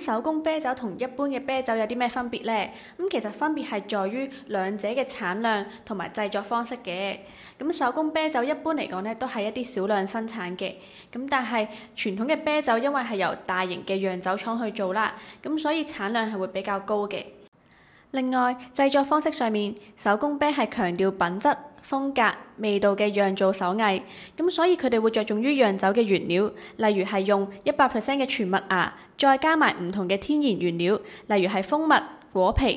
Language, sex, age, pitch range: Chinese, female, 20-39, 195-270 Hz